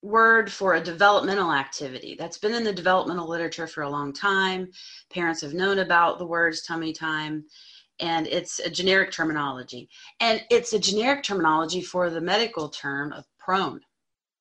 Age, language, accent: 30-49, English, American